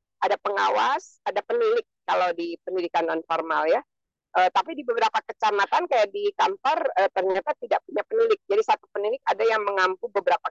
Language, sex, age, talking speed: Indonesian, female, 50-69, 170 wpm